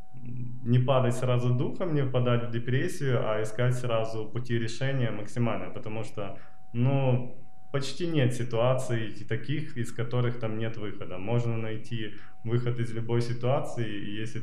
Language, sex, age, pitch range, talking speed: Russian, male, 20-39, 110-130 Hz, 135 wpm